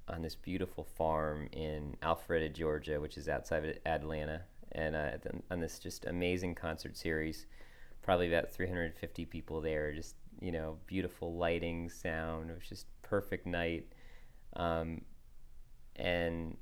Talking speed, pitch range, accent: 135 wpm, 80-90 Hz, American